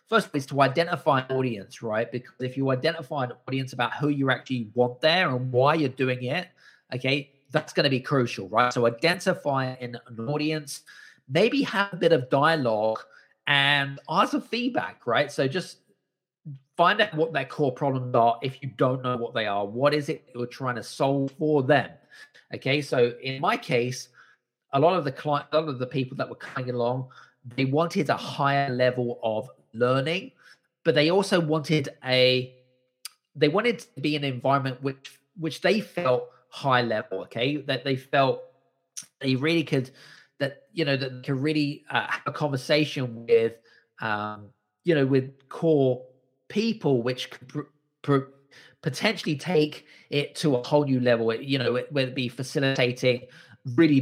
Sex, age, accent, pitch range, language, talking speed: male, 30-49, British, 125-155 Hz, English, 180 wpm